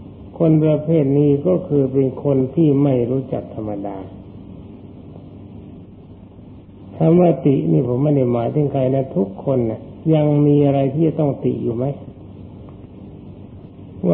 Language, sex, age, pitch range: Thai, male, 60-79, 100-150 Hz